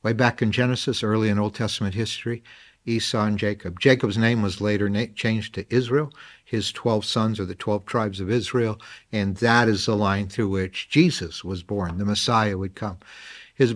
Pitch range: 100-120 Hz